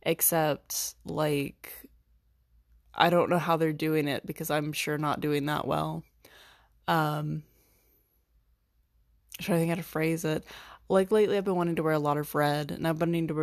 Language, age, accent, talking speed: English, 20-39, American, 180 wpm